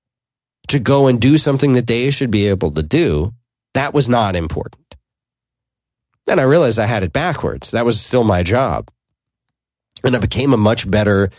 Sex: male